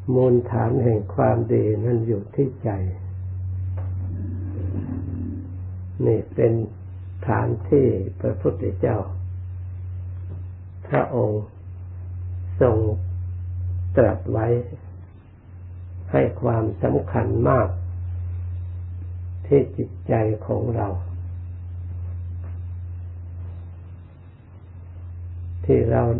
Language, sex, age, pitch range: Thai, male, 60-79, 90-110 Hz